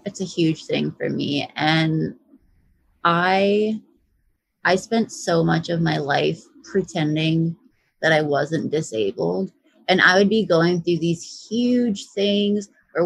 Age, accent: 20-39, American